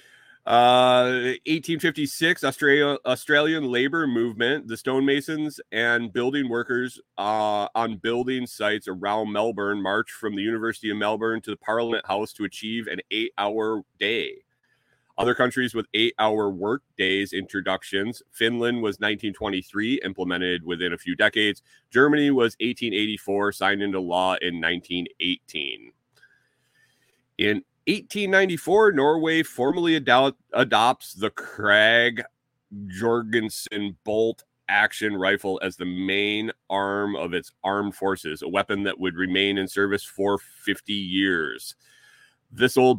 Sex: male